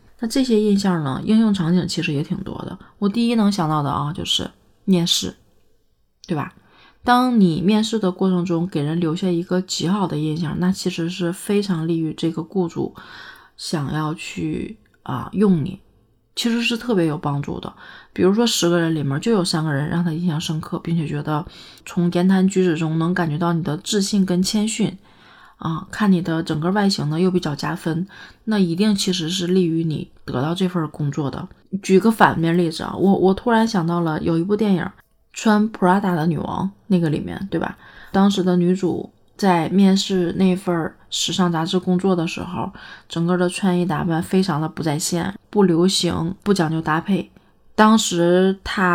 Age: 30-49